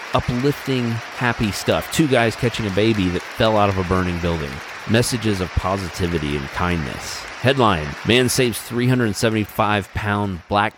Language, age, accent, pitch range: English, 30-49, American, 90-110 Hz